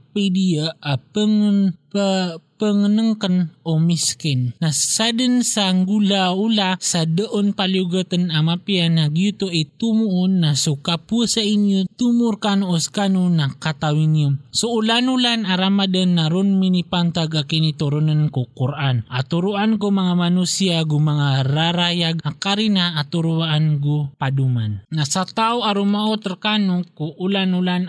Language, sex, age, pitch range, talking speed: English, male, 20-39, 155-195 Hz, 120 wpm